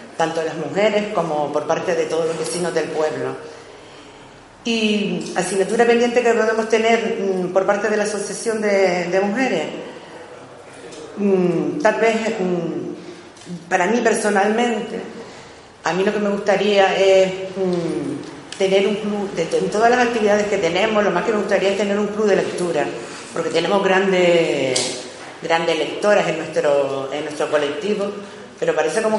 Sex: female